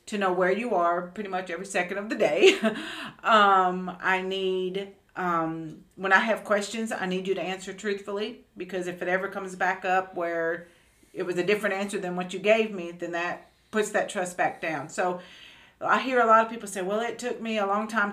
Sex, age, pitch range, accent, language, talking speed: female, 50-69, 180-220 Hz, American, English, 220 wpm